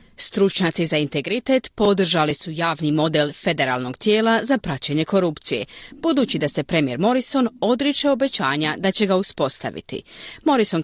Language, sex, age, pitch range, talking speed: Croatian, female, 40-59, 150-245 Hz, 135 wpm